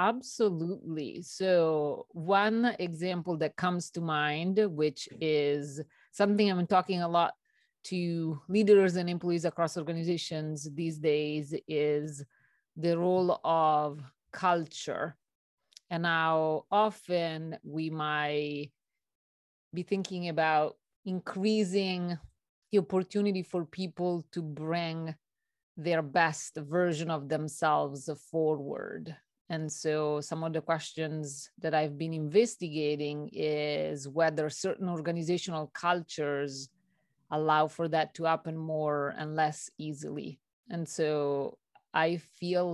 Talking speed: 110 wpm